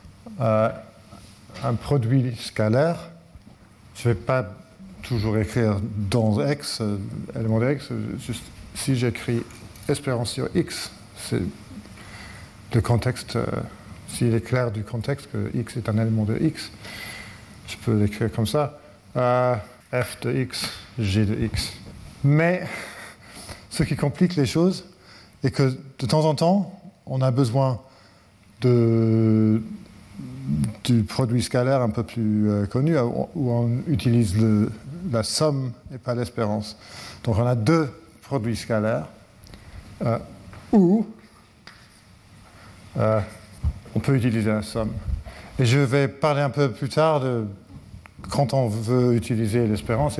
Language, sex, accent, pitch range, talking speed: French, male, French, 105-130 Hz, 130 wpm